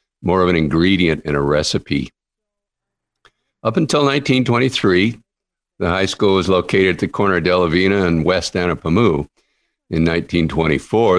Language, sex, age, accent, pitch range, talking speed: English, male, 50-69, American, 85-115 Hz, 135 wpm